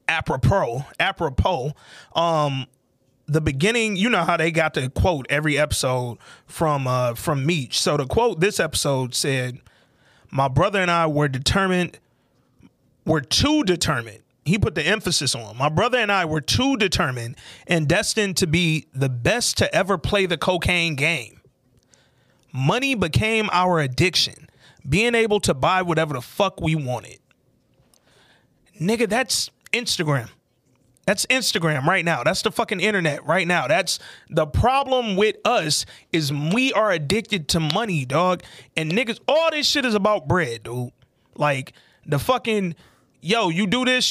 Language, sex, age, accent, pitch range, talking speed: English, male, 30-49, American, 135-210 Hz, 150 wpm